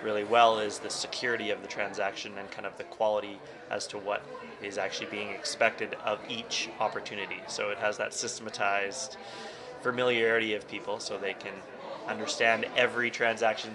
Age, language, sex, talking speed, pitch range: 20-39, English, male, 160 wpm, 105-115 Hz